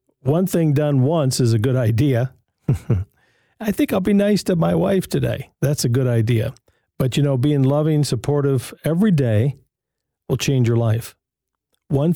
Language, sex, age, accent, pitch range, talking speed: English, male, 50-69, American, 120-150 Hz, 170 wpm